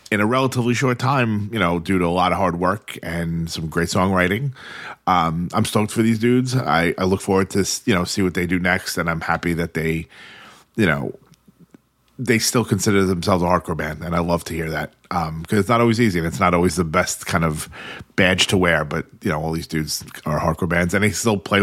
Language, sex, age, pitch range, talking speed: English, male, 30-49, 85-105 Hz, 240 wpm